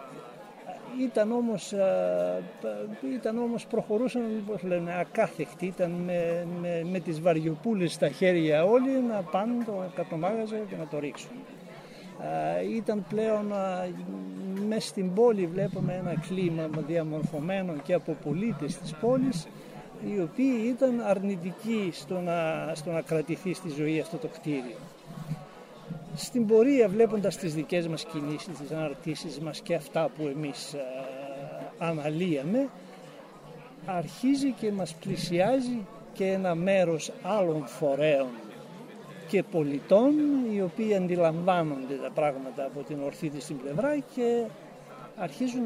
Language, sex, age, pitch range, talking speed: Greek, male, 60-79, 155-210 Hz, 125 wpm